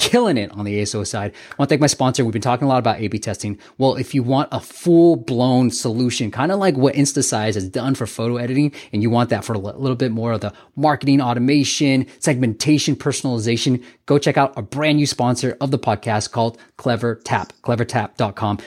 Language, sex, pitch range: English, male, 115-160 Hz